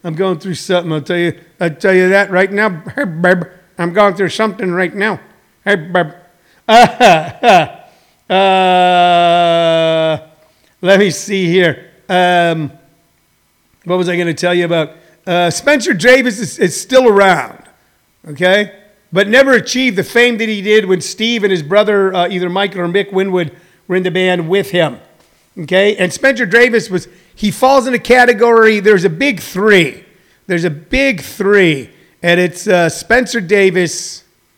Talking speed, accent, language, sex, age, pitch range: 150 wpm, American, English, male, 50-69, 175-210 Hz